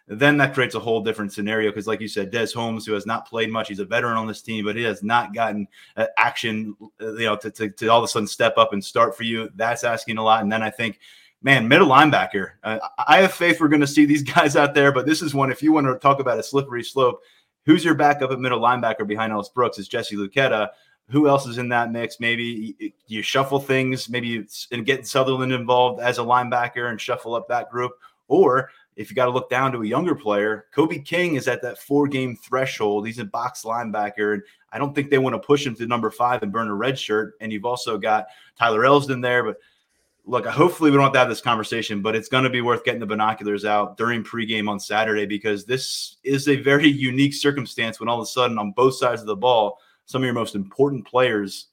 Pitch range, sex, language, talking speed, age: 110-135 Hz, male, English, 240 wpm, 30-49